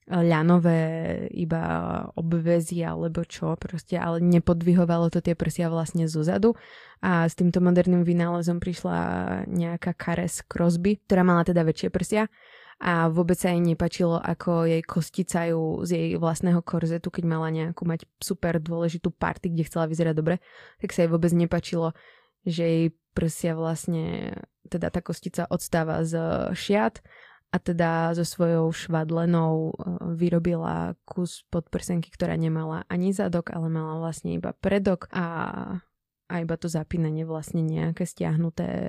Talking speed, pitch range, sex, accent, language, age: 135 wpm, 165-180 Hz, female, native, Czech, 20-39